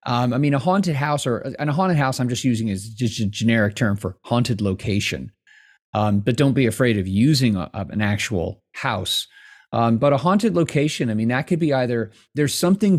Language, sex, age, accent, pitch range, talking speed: English, male, 30-49, American, 105-135 Hz, 210 wpm